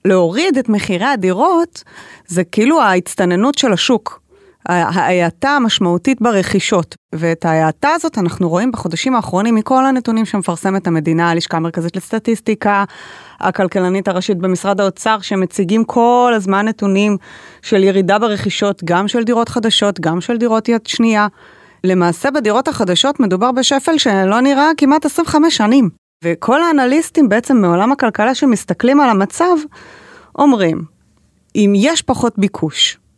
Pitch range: 185-280 Hz